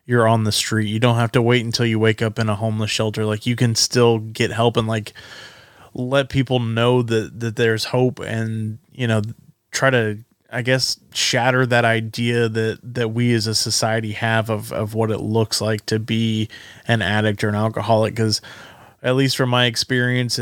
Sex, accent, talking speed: male, American, 200 wpm